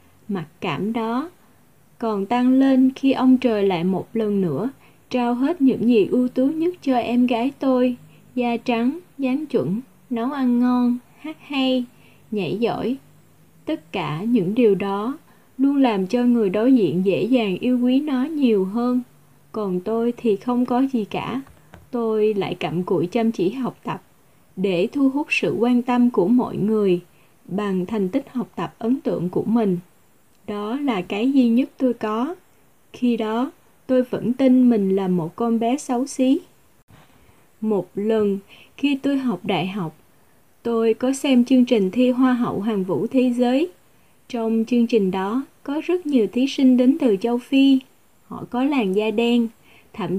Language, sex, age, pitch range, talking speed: Vietnamese, female, 20-39, 210-260 Hz, 170 wpm